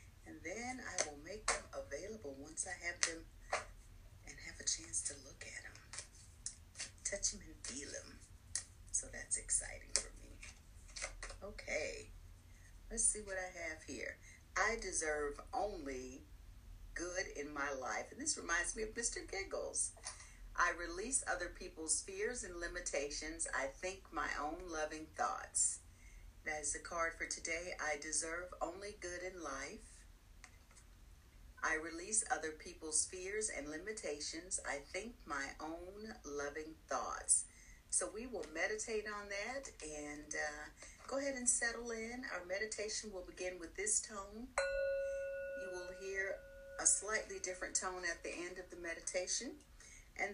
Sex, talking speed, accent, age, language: female, 145 wpm, American, 40-59, English